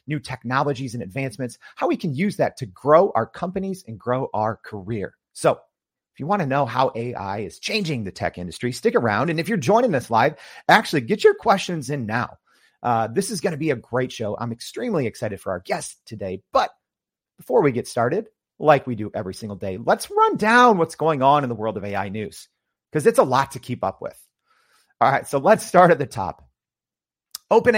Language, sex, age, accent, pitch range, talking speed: English, male, 40-59, American, 115-170 Hz, 215 wpm